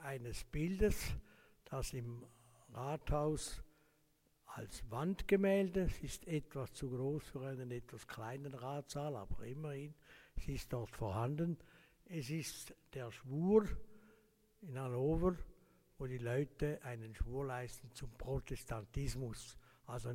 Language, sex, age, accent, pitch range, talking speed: German, male, 60-79, Swiss, 120-155 Hz, 115 wpm